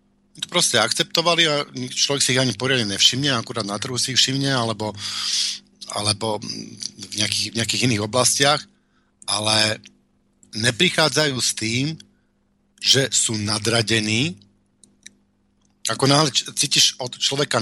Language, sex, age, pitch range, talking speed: Slovak, male, 50-69, 110-140 Hz, 125 wpm